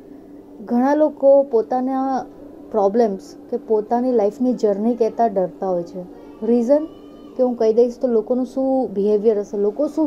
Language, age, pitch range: Gujarati, 30-49, 210-275 Hz